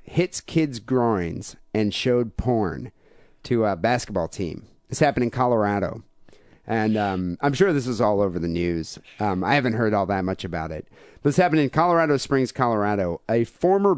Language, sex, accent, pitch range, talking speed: English, male, American, 105-145 Hz, 175 wpm